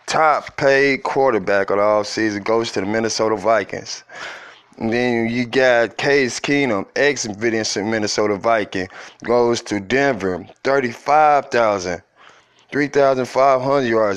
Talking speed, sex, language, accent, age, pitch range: 105 wpm, male, English, American, 20-39, 105-130 Hz